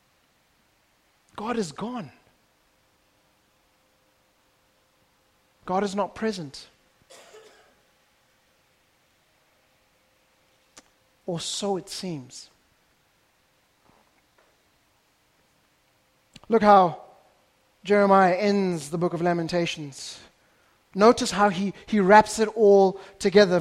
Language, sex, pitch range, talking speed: English, male, 175-220 Hz, 70 wpm